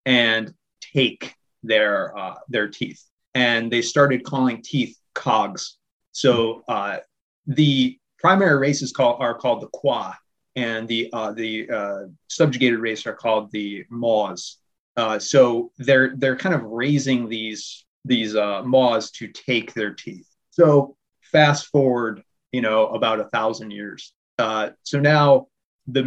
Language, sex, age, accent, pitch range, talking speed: English, male, 30-49, American, 115-140 Hz, 140 wpm